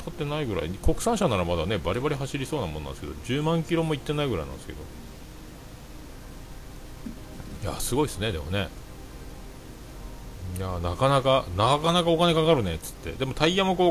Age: 40-59